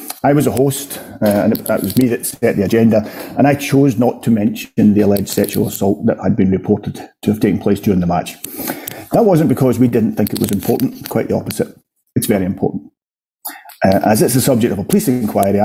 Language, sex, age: English, male, 40-59